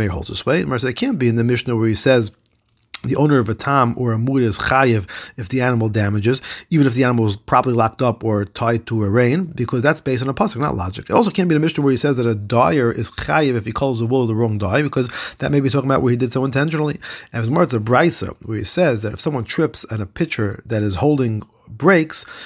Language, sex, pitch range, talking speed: English, male, 115-150 Hz, 260 wpm